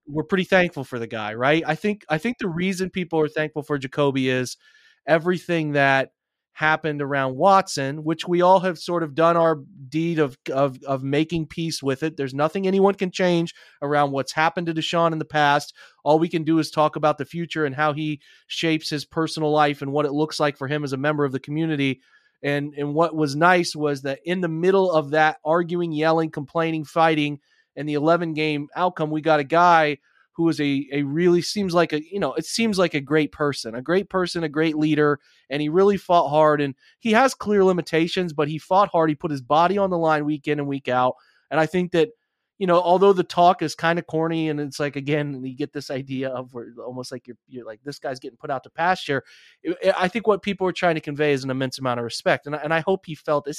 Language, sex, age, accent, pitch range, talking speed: English, male, 30-49, American, 145-175 Hz, 235 wpm